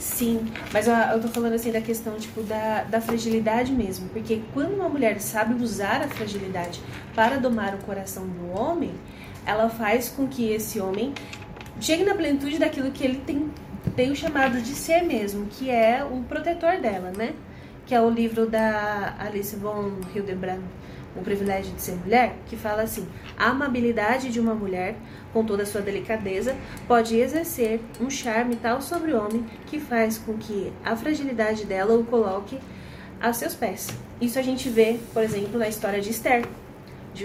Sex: female